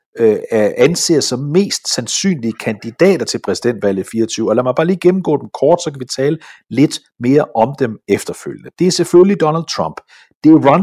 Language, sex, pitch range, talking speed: Danish, male, 110-155 Hz, 185 wpm